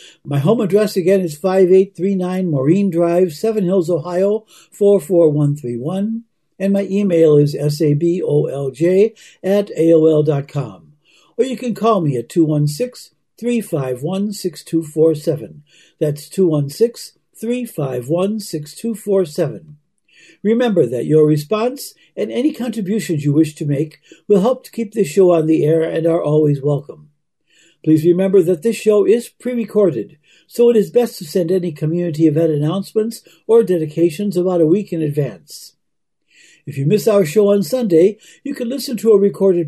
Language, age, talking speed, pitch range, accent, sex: English, 60-79, 135 wpm, 160-205 Hz, American, male